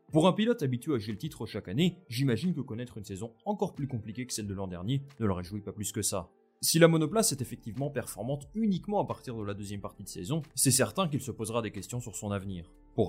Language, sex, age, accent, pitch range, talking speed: French, male, 20-39, French, 100-140 Hz, 255 wpm